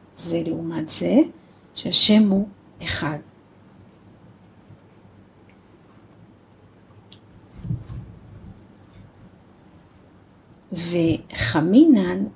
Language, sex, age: Hebrew, female, 40-59